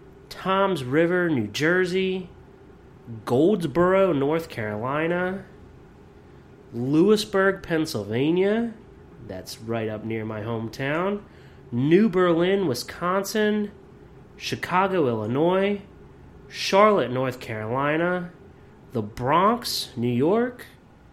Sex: male